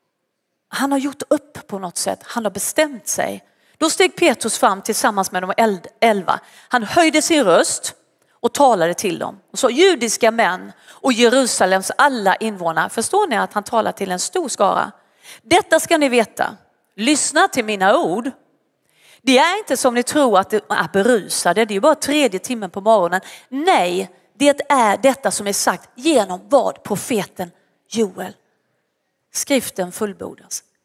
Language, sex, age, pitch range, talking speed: Swedish, female, 40-59, 200-275 Hz, 165 wpm